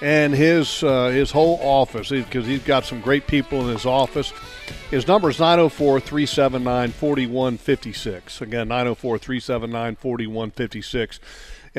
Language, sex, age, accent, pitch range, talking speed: English, male, 40-59, American, 125-160 Hz, 105 wpm